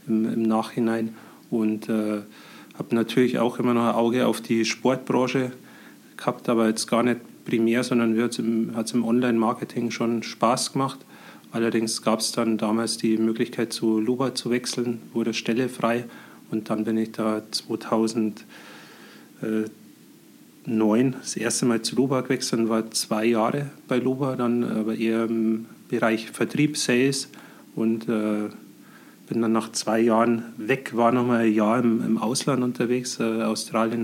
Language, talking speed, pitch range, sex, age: German, 145 wpm, 110-120 Hz, male, 30-49